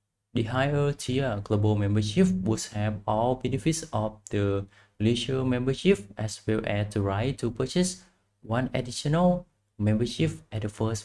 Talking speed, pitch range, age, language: 140 wpm, 105-130 Hz, 20-39, English